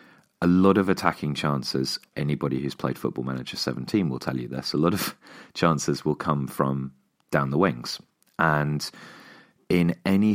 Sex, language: male, English